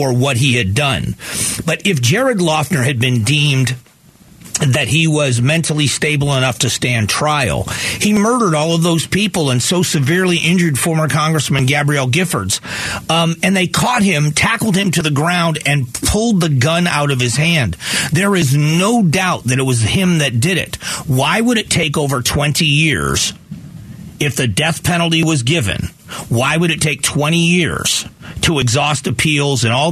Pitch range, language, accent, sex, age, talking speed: 130-170 Hz, English, American, male, 40-59, 175 wpm